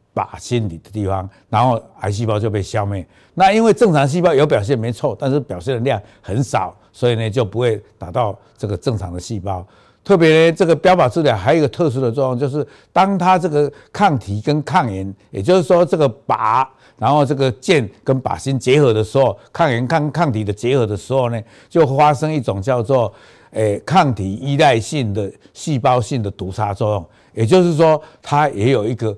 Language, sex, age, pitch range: Chinese, male, 60-79, 110-150 Hz